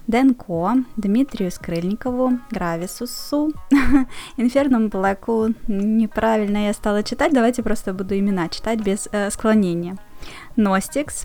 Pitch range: 185-245 Hz